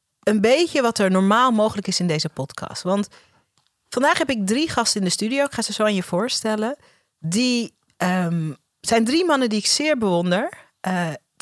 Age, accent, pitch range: 40-59, Dutch, 180-240 Hz